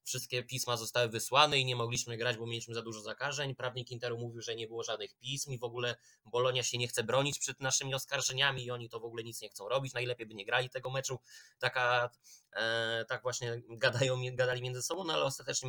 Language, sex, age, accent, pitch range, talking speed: Polish, male, 20-39, native, 115-130 Hz, 210 wpm